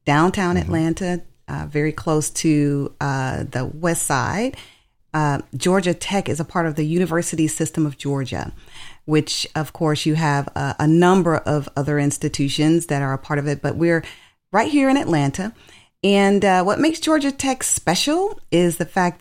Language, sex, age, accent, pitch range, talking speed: English, female, 40-59, American, 140-170 Hz, 170 wpm